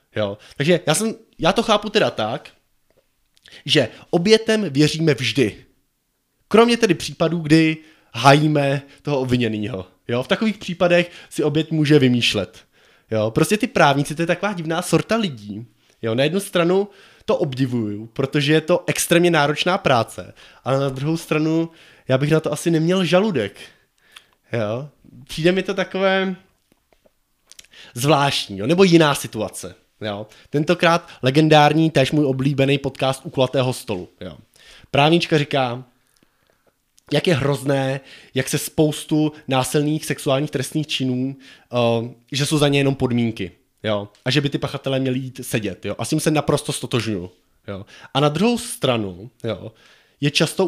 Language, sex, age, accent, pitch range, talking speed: Czech, male, 20-39, native, 120-165 Hz, 135 wpm